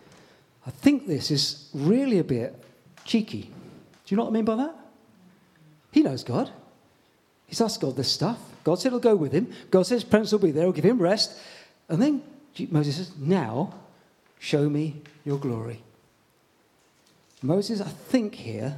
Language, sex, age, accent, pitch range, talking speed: English, male, 40-59, British, 135-190 Hz, 175 wpm